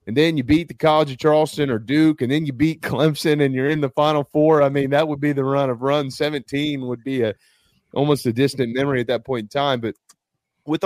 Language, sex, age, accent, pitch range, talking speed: English, male, 30-49, American, 105-135 Hz, 250 wpm